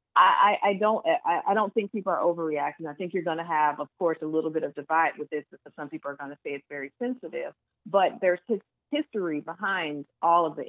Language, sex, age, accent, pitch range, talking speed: English, female, 30-49, American, 155-180 Hz, 225 wpm